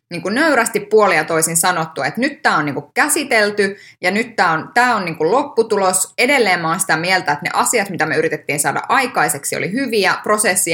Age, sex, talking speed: 20-39, female, 195 wpm